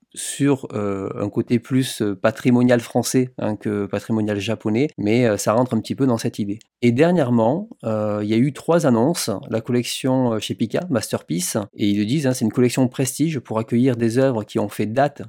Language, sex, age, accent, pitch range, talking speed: French, male, 30-49, French, 105-130 Hz, 205 wpm